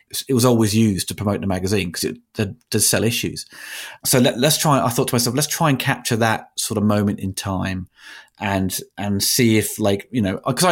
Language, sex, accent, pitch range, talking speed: English, male, British, 95-120 Hz, 225 wpm